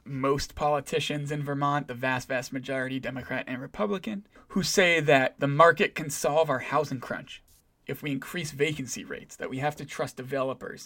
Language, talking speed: English, 175 wpm